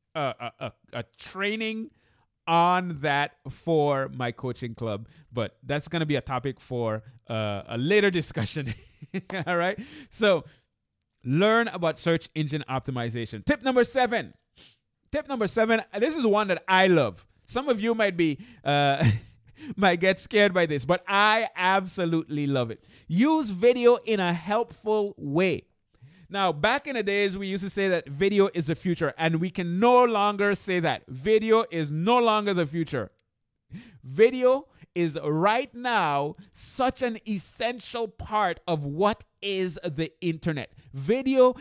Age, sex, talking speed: 30-49, male, 150 wpm